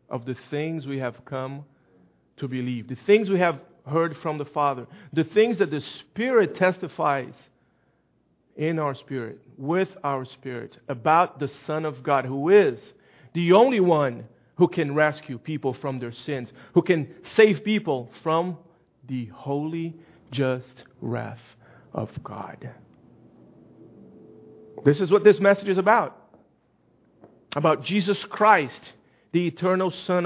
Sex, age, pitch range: male, 40-59, 135-190 Hz